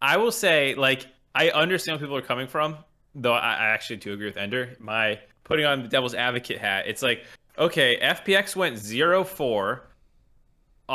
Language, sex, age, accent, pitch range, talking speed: English, male, 20-39, American, 115-140 Hz, 170 wpm